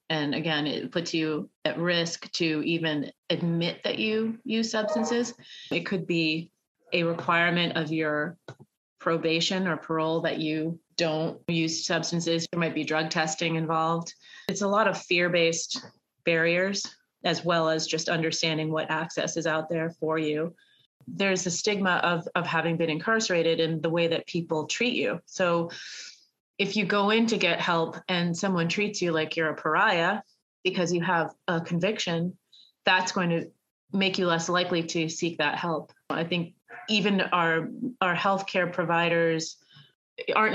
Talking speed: 160 wpm